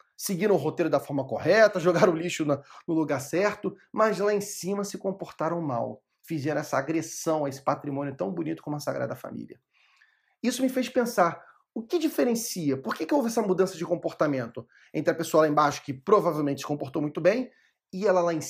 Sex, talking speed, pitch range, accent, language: male, 200 wpm, 145-200 Hz, Brazilian, Portuguese